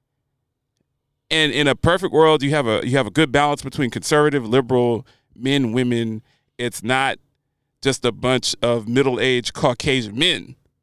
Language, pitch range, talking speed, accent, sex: English, 125-170 Hz, 150 wpm, American, male